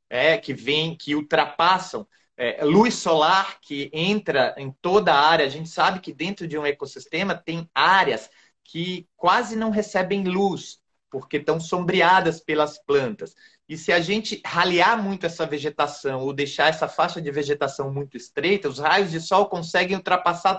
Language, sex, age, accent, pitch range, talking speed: Portuguese, male, 30-49, Brazilian, 150-185 Hz, 165 wpm